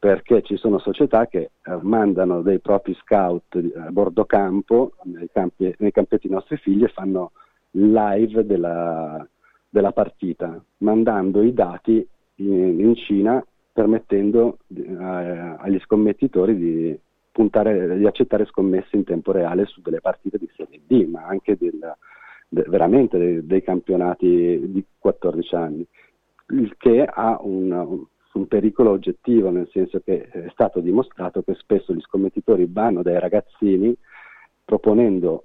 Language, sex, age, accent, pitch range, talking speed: Italian, male, 40-59, native, 90-110 Hz, 130 wpm